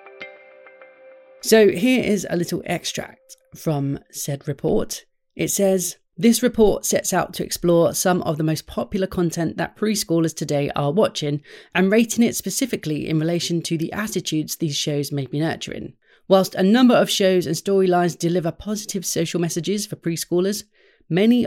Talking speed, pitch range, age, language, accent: 155 wpm, 145-195 Hz, 30-49, English, British